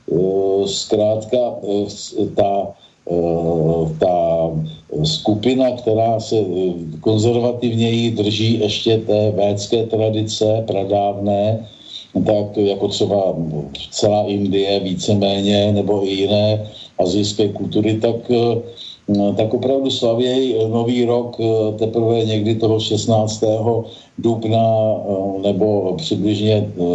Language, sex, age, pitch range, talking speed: Slovak, male, 50-69, 100-115 Hz, 80 wpm